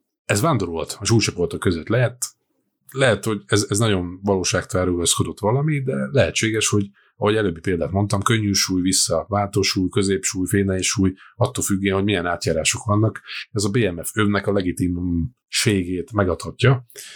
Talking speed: 135 wpm